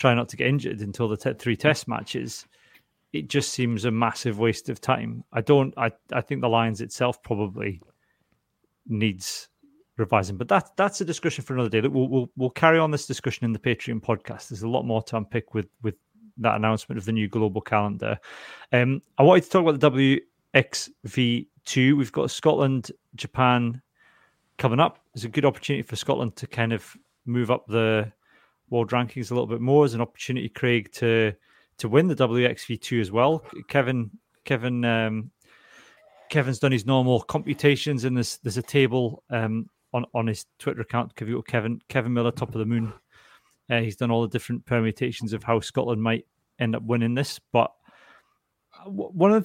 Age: 30-49